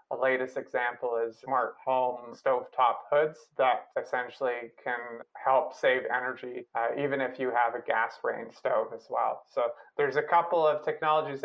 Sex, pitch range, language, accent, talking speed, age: male, 125-145 Hz, English, American, 160 wpm, 30-49